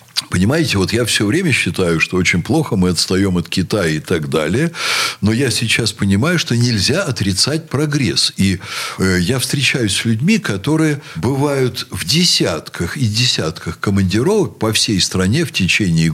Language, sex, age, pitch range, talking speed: Russian, male, 60-79, 95-150 Hz, 155 wpm